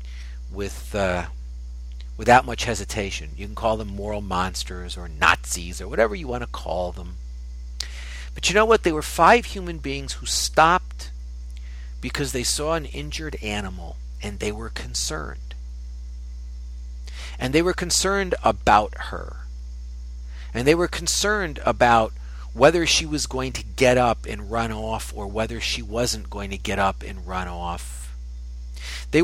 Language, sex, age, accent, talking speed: English, male, 40-59, American, 150 wpm